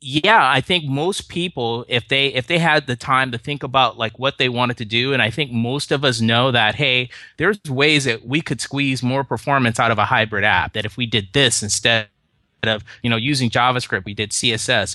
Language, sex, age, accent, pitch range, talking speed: English, male, 30-49, American, 110-135 Hz, 230 wpm